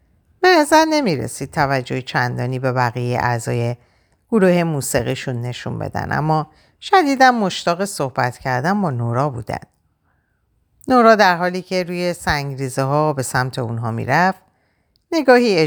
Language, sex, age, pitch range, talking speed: Persian, female, 50-69, 125-210 Hz, 120 wpm